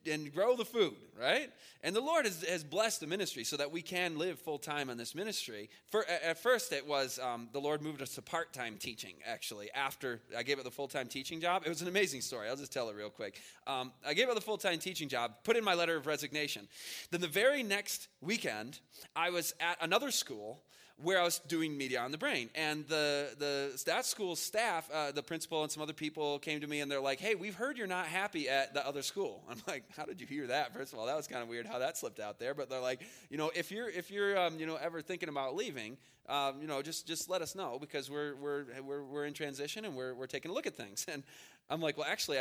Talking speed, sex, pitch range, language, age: 255 wpm, male, 140-180 Hz, English, 20-39